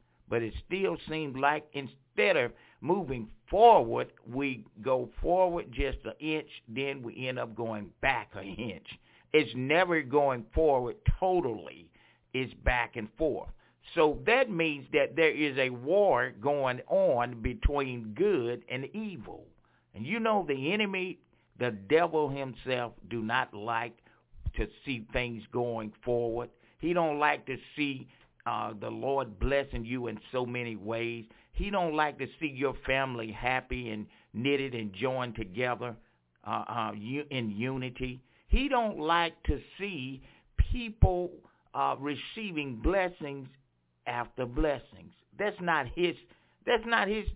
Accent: American